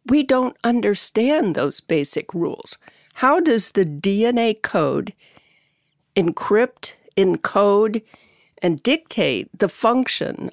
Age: 50-69